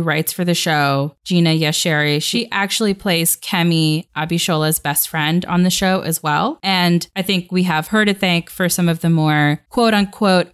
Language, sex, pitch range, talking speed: English, female, 165-215 Hz, 190 wpm